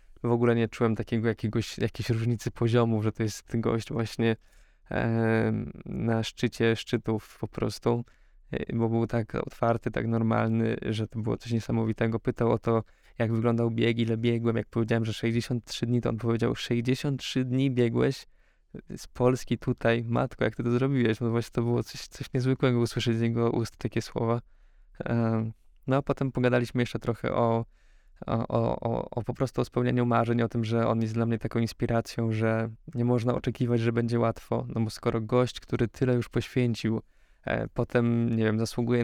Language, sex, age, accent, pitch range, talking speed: Polish, male, 20-39, native, 115-120 Hz, 180 wpm